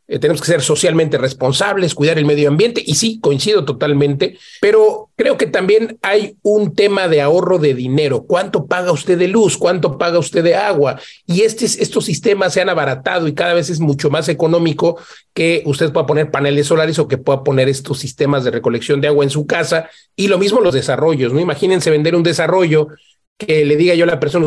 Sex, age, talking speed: male, 40-59, 205 wpm